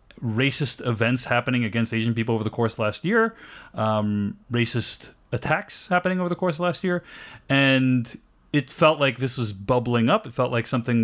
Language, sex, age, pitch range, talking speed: English, male, 30-49, 105-130 Hz, 185 wpm